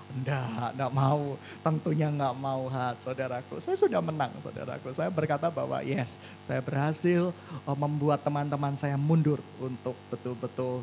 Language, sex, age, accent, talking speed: Indonesian, male, 20-39, native, 125 wpm